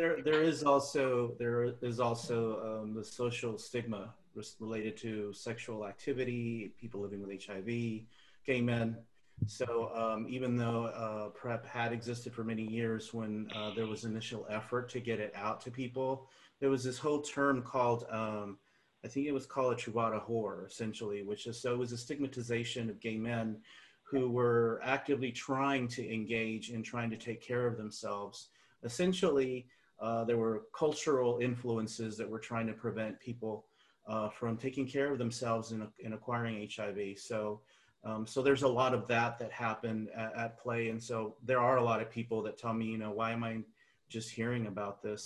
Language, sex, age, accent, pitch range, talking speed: English, male, 30-49, American, 110-125 Hz, 185 wpm